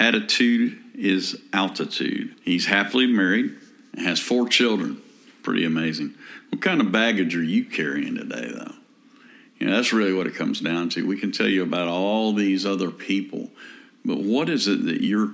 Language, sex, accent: English, male, American